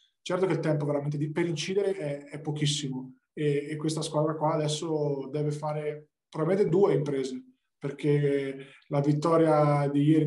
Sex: male